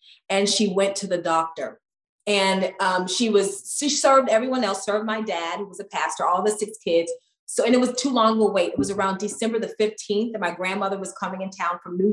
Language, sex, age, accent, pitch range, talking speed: English, female, 30-49, American, 185-220 Hz, 235 wpm